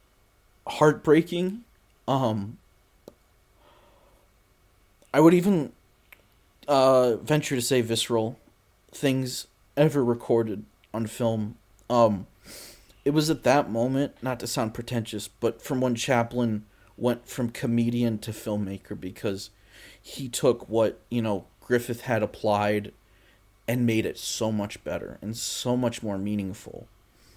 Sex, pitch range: male, 100-125 Hz